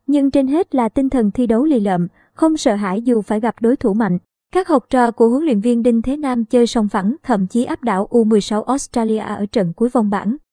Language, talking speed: Vietnamese, 245 wpm